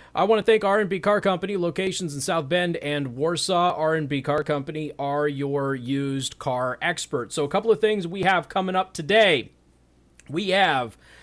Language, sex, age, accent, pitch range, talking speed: English, male, 30-49, American, 140-190 Hz, 185 wpm